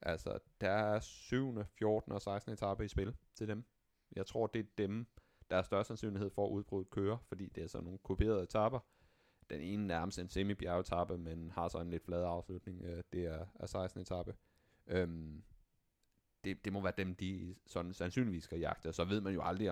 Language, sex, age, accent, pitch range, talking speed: Danish, male, 30-49, native, 85-100 Hz, 205 wpm